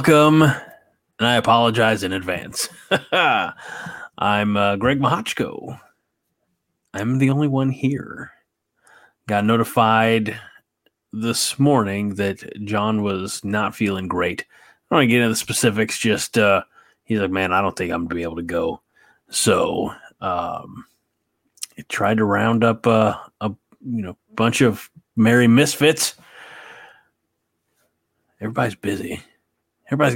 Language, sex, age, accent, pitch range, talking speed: English, male, 30-49, American, 100-125 Hz, 125 wpm